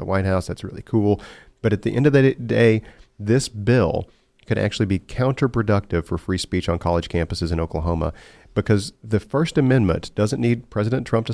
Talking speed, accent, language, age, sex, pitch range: 190 wpm, American, English, 40-59, male, 95-115 Hz